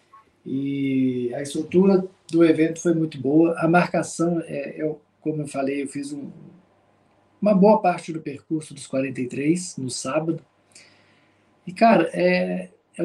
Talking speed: 130 wpm